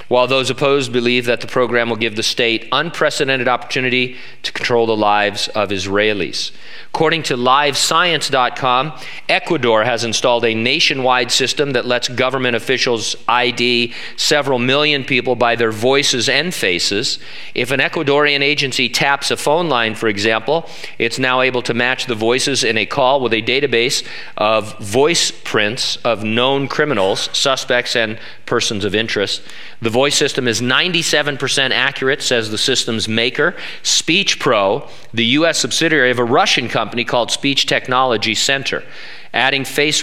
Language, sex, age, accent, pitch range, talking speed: English, male, 40-59, American, 115-140 Hz, 150 wpm